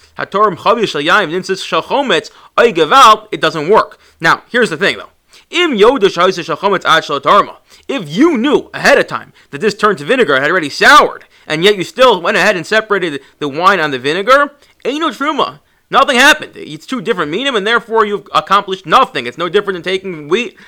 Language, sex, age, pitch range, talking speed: English, male, 30-49, 150-210 Hz, 160 wpm